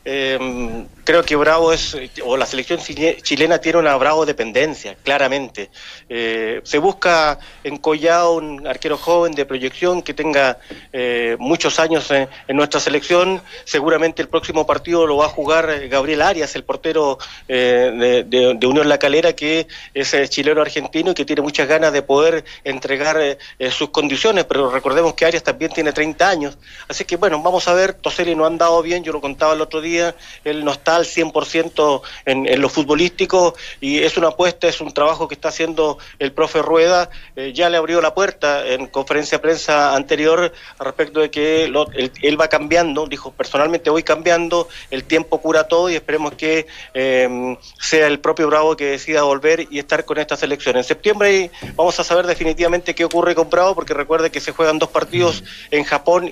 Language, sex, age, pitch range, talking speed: Spanish, male, 40-59, 145-165 Hz, 190 wpm